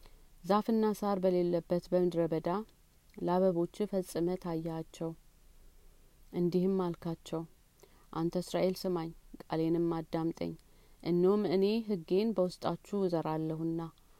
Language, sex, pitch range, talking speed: Amharic, female, 165-190 Hz, 80 wpm